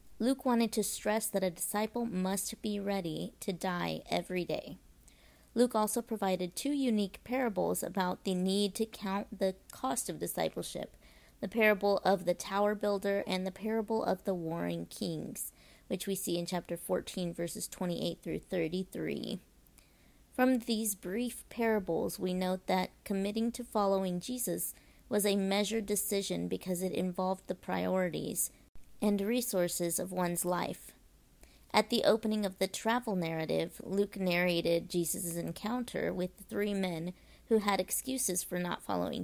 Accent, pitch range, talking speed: American, 175-215 Hz, 150 wpm